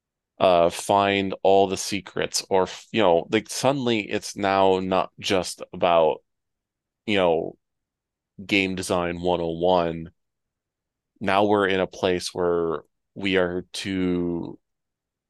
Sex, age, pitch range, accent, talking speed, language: male, 20-39, 90-100 Hz, American, 115 wpm, English